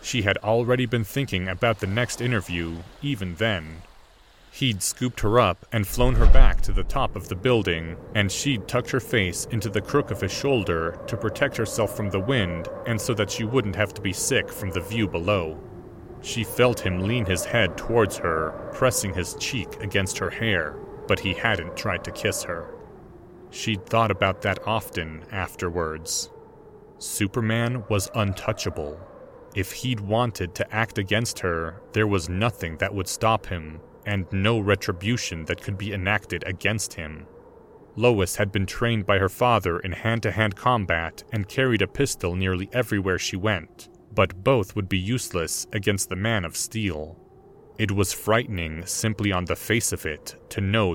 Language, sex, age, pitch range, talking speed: English, male, 30-49, 95-115 Hz, 175 wpm